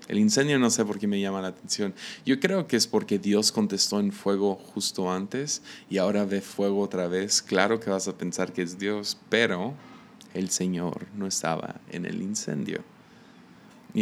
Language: Spanish